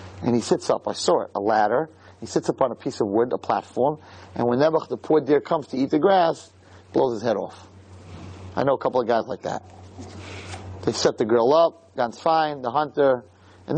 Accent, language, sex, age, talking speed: American, English, male, 30-49, 225 wpm